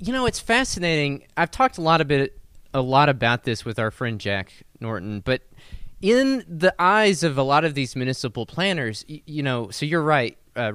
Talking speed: 205 wpm